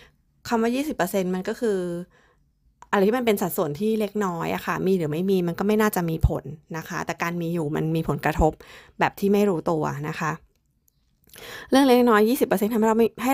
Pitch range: 170-215 Hz